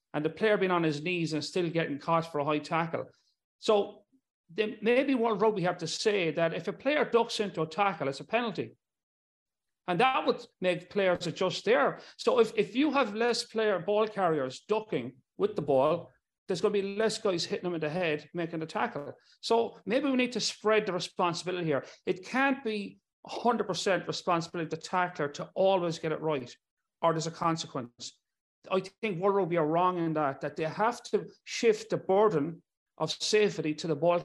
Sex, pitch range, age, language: male, 160-215 Hz, 40-59, English